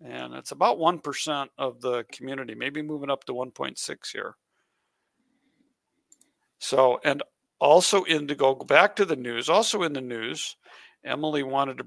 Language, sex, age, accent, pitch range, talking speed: English, male, 50-69, American, 135-190 Hz, 145 wpm